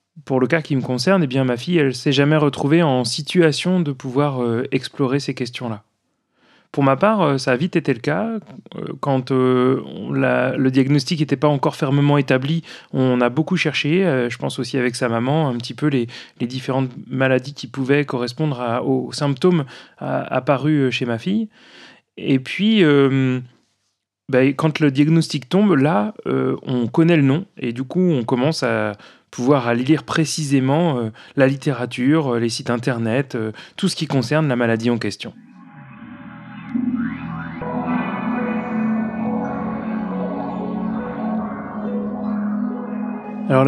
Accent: French